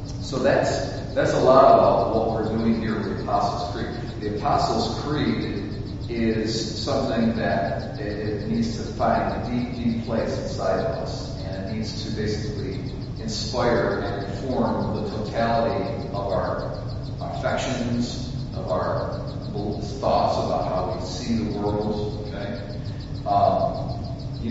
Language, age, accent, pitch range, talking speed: English, 40-59, American, 105-125 Hz, 140 wpm